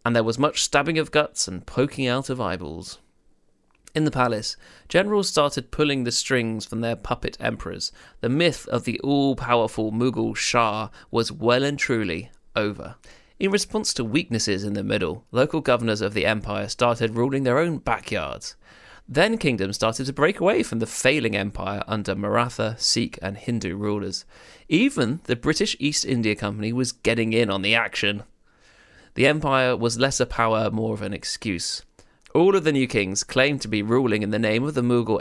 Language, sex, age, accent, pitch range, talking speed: English, male, 30-49, British, 110-135 Hz, 180 wpm